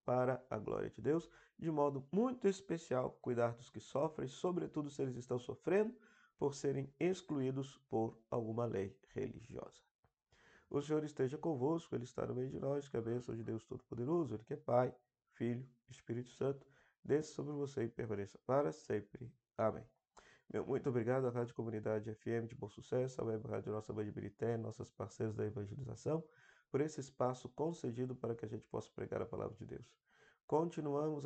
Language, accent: Portuguese, Brazilian